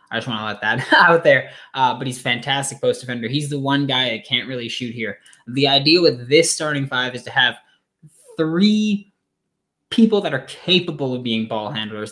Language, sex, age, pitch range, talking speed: English, male, 20-39, 115-160 Hz, 205 wpm